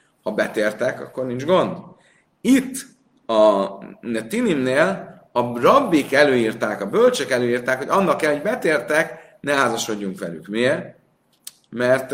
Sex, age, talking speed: male, 30-49, 125 wpm